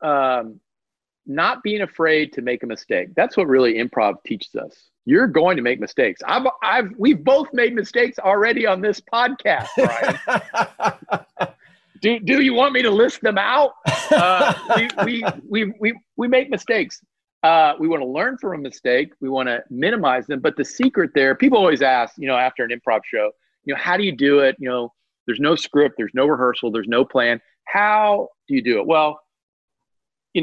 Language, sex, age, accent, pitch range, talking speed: English, male, 40-59, American, 130-215 Hz, 190 wpm